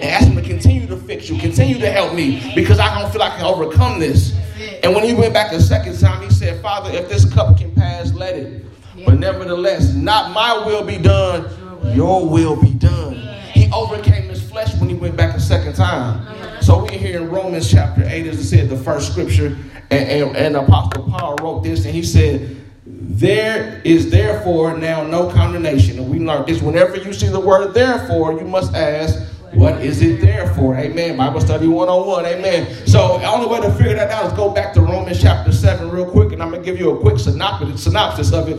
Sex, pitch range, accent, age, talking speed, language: male, 95-140 Hz, American, 30-49, 220 wpm, English